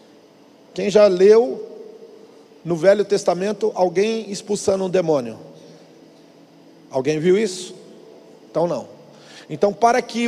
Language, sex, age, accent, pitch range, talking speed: Portuguese, male, 40-59, Brazilian, 195-240 Hz, 105 wpm